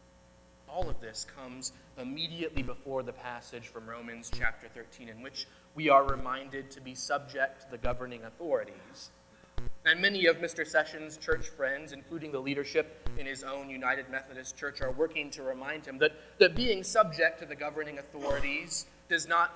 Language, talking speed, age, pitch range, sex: English, 170 wpm, 30-49, 120-160 Hz, male